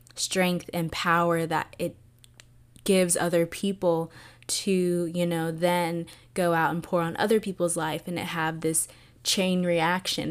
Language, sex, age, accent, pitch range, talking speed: English, female, 20-39, American, 160-180 Hz, 150 wpm